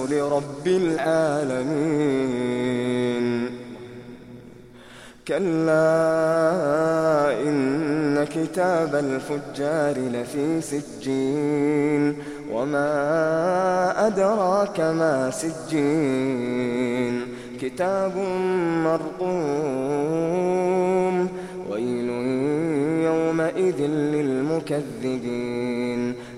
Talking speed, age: 35 wpm, 20-39